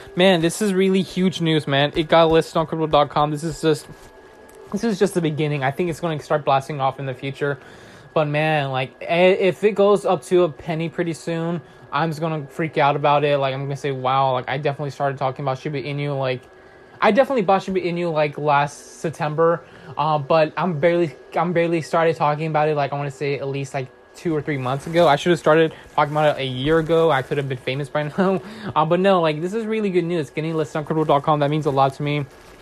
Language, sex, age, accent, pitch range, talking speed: English, male, 20-39, American, 140-170 Hz, 240 wpm